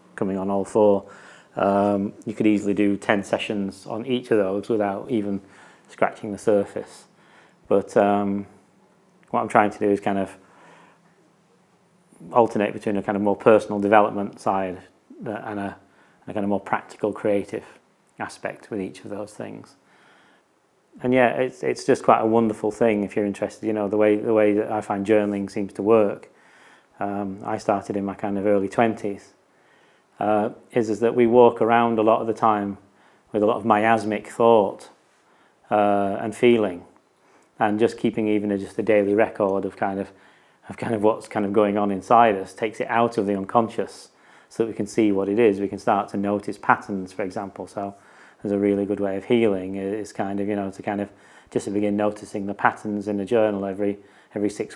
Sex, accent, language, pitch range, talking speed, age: male, British, English, 100-110 Hz, 200 wpm, 30-49